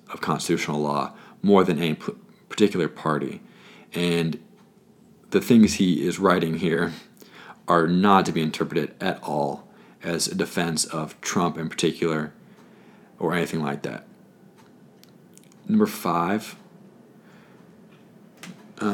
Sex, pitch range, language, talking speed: male, 80-115 Hz, English, 110 wpm